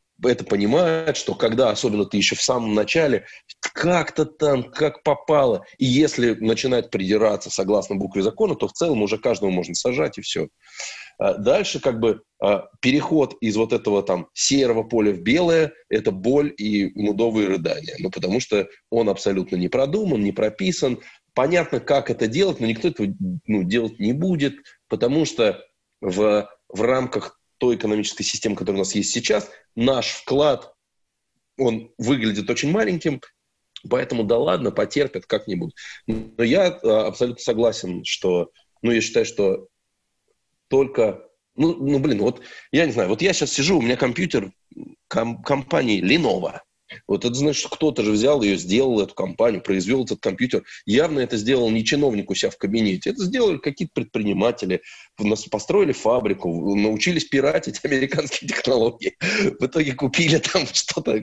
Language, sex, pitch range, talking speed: Russian, male, 105-155 Hz, 155 wpm